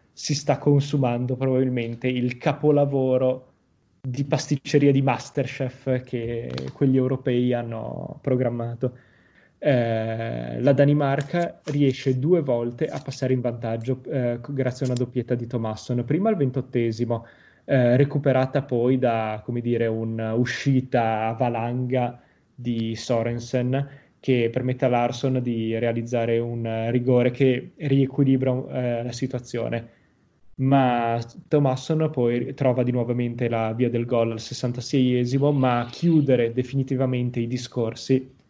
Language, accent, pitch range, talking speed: Italian, native, 120-135 Hz, 120 wpm